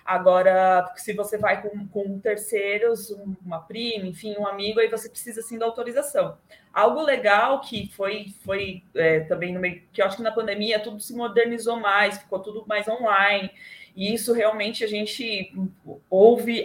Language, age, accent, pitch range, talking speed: Portuguese, 20-39, Brazilian, 195-230 Hz, 170 wpm